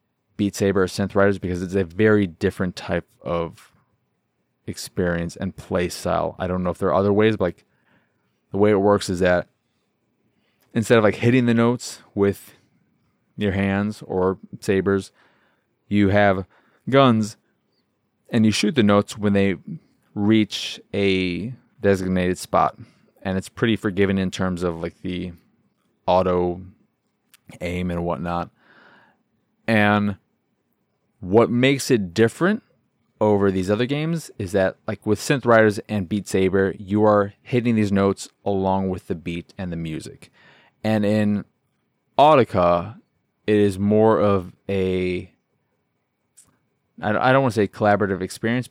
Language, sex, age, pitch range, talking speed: English, male, 20-39, 95-105 Hz, 140 wpm